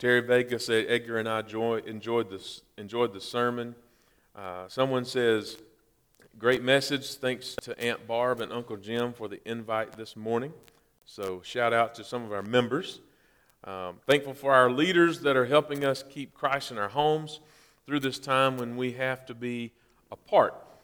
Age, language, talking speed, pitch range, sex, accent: 40-59, English, 175 wpm, 115-140 Hz, male, American